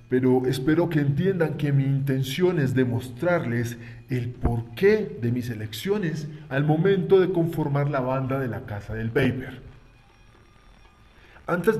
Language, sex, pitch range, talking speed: Spanish, male, 120-170 Hz, 130 wpm